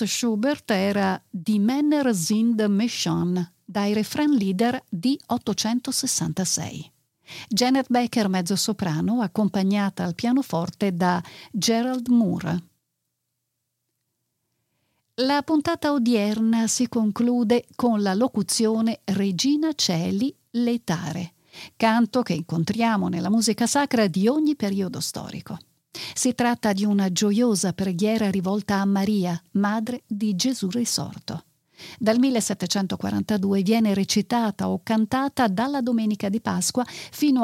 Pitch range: 190-240 Hz